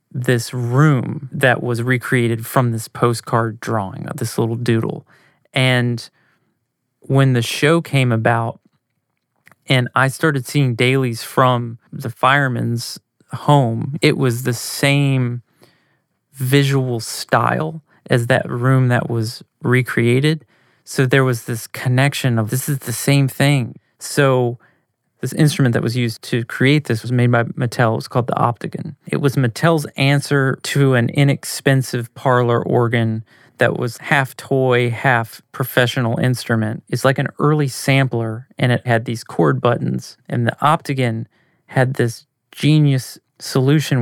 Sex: male